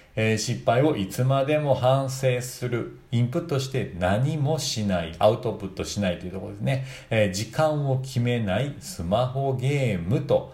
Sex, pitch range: male, 105-135 Hz